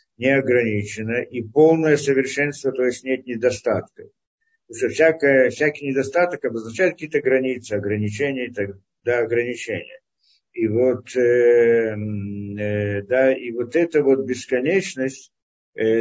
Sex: male